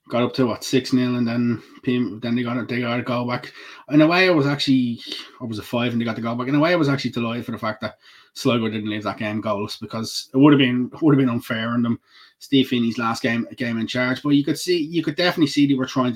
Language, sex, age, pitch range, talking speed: English, male, 20-39, 125-135 Hz, 295 wpm